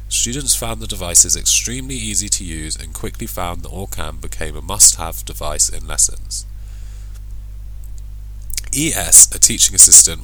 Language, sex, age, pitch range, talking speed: English, male, 20-39, 90-105 Hz, 135 wpm